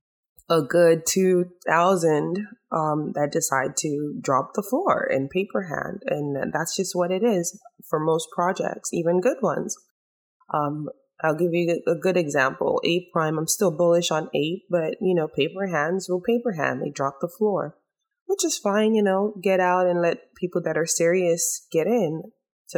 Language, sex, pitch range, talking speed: English, female, 160-210 Hz, 175 wpm